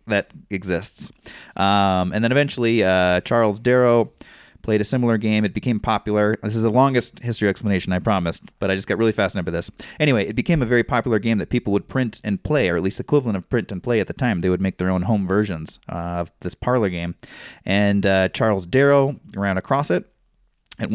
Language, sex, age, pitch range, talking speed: English, male, 30-49, 95-120 Hz, 220 wpm